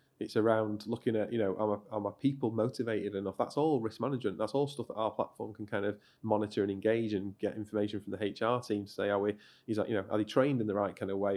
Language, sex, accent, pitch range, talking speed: English, male, British, 100-115 Hz, 265 wpm